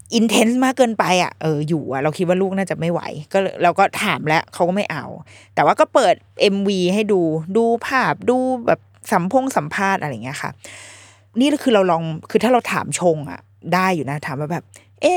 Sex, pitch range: female, 160-270 Hz